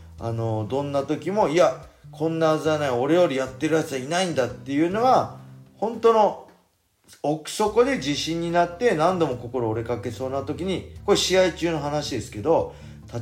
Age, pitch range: 40-59, 105-155 Hz